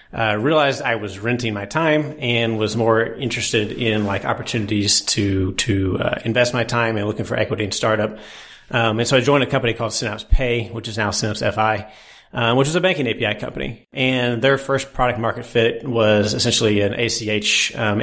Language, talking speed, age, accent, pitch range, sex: English, 195 wpm, 30-49, American, 105-125 Hz, male